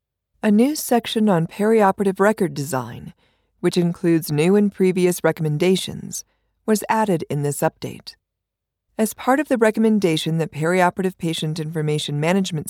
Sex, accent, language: female, American, English